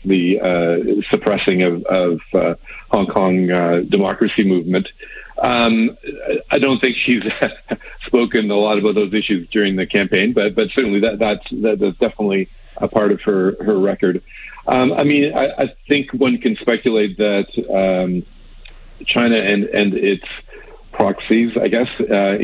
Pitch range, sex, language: 95-110 Hz, male, English